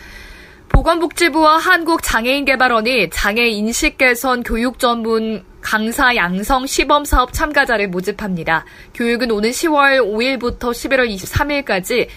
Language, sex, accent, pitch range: Korean, female, native, 215-270 Hz